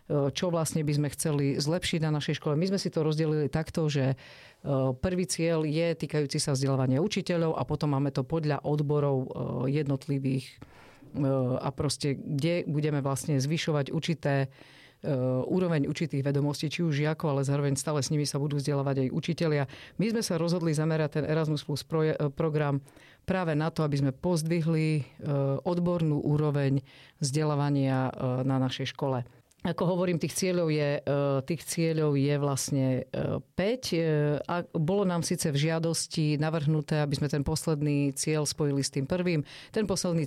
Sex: female